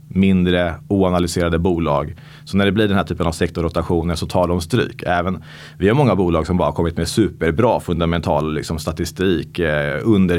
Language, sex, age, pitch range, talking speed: Swedish, male, 30-49, 85-115 Hz, 180 wpm